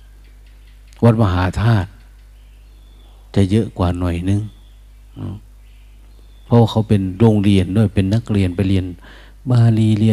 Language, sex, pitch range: Thai, male, 95-115 Hz